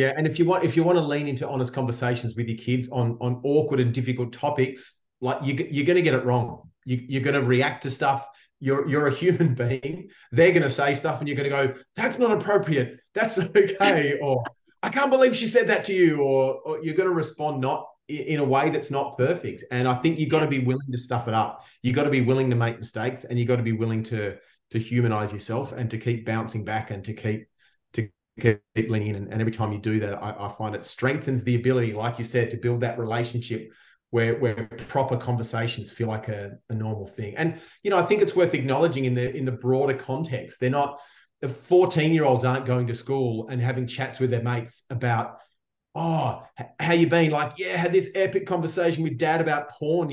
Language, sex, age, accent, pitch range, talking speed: English, male, 30-49, Australian, 120-160 Hz, 235 wpm